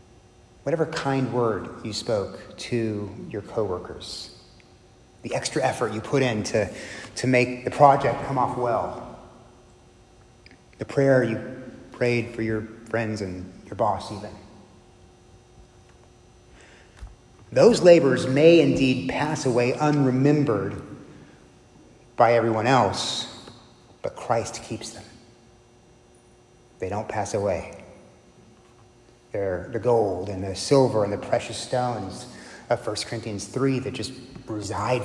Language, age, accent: English, 30-49, American